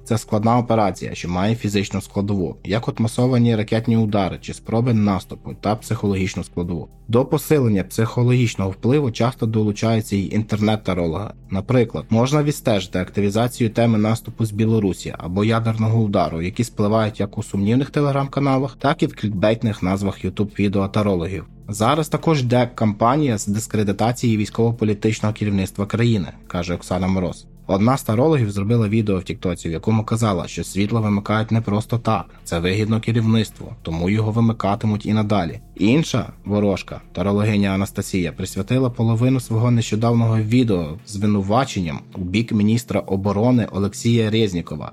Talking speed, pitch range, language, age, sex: 135 wpm, 100-120 Hz, Ukrainian, 20-39, male